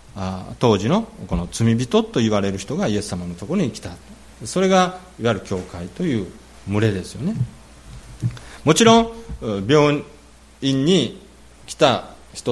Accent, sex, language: native, male, Japanese